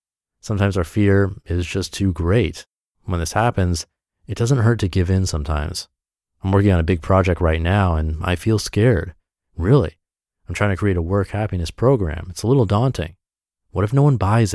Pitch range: 85-115 Hz